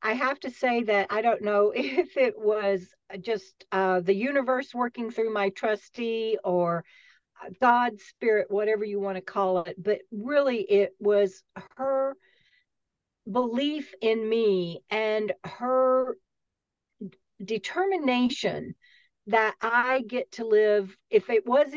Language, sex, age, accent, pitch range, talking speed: English, female, 50-69, American, 200-255 Hz, 130 wpm